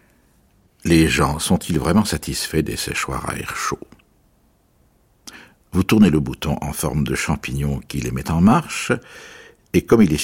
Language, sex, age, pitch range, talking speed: French, male, 60-79, 75-105 Hz, 160 wpm